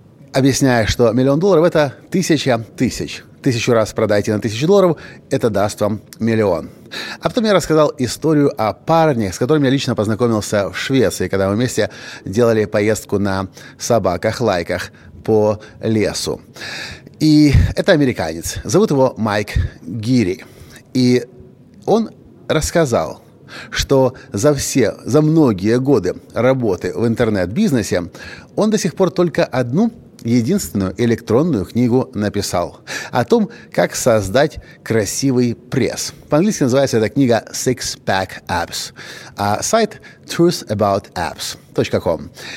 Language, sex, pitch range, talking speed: Russian, male, 105-140 Hz, 120 wpm